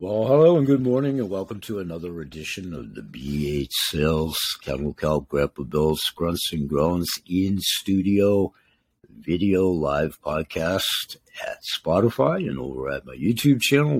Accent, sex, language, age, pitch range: American, male, Chinese, 60-79, 80-110 Hz